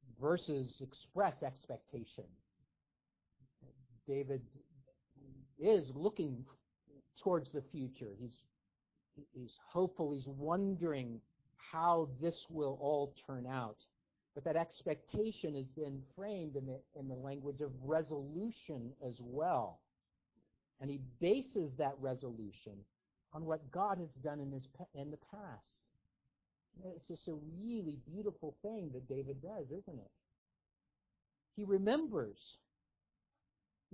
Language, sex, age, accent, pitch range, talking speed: English, male, 50-69, American, 135-195 Hz, 115 wpm